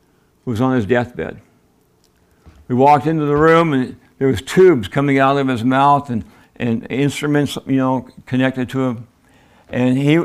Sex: male